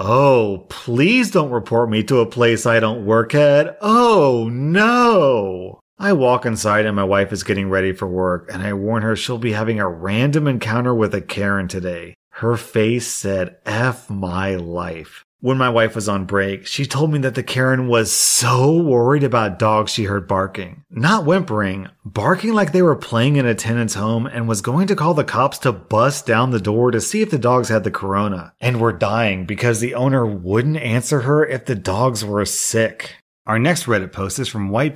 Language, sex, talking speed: English, male, 200 wpm